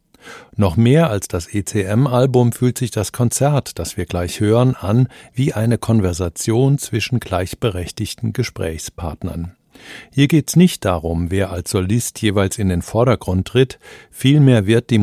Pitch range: 95-120 Hz